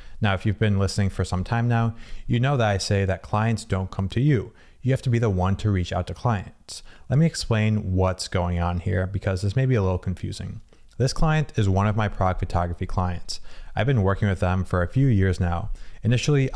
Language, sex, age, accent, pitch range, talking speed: English, male, 20-39, American, 95-115 Hz, 235 wpm